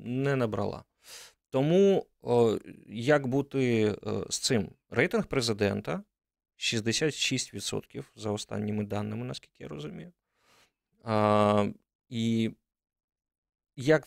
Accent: native